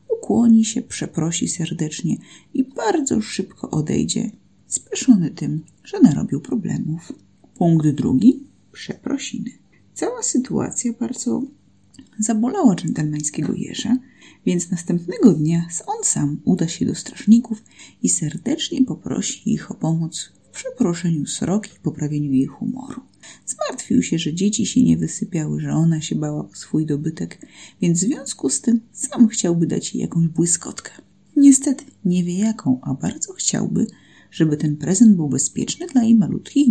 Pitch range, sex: 165-245 Hz, female